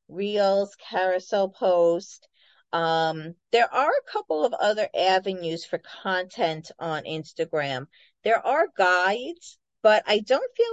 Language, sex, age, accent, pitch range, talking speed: English, female, 40-59, American, 165-245 Hz, 125 wpm